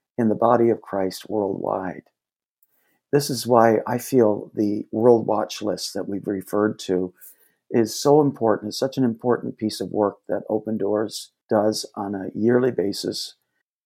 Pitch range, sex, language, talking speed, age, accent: 105-130 Hz, male, English, 155 wpm, 50-69, American